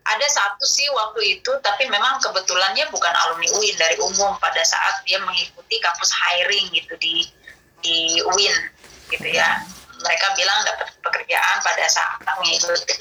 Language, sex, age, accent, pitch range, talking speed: Indonesian, female, 20-39, native, 180-245 Hz, 150 wpm